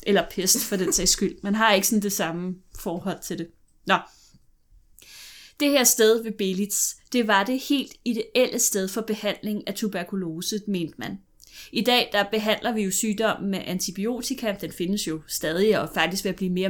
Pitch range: 190-235 Hz